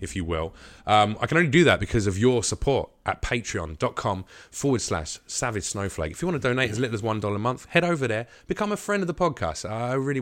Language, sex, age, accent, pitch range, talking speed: English, male, 20-39, British, 100-140 Hz, 240 wpm